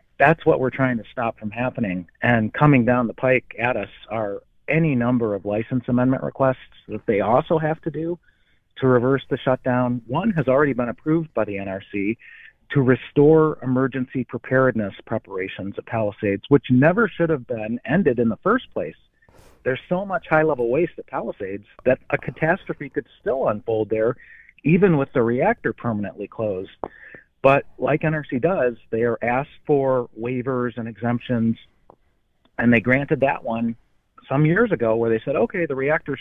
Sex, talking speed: male, 170 wpm